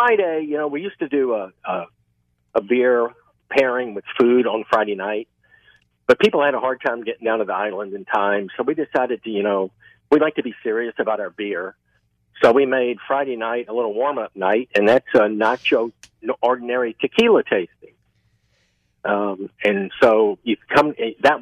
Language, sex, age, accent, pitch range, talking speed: English, male, 50-69, American, 100-140 Hz, 190 wpm